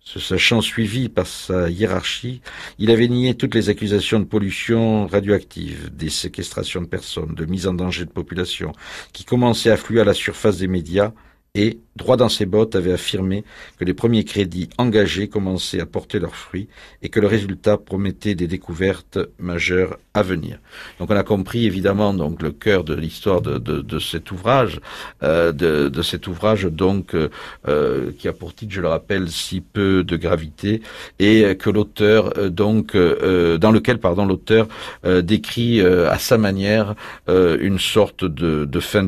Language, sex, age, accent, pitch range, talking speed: French, male, 50-69, French, 85-105 Hz, 175 wpm